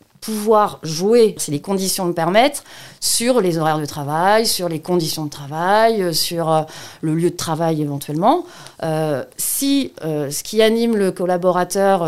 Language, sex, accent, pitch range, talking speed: French, female, French, 165-220 Hz, 155 wpm